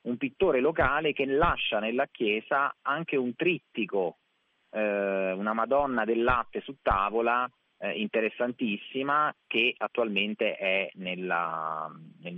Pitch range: 100-140 Hz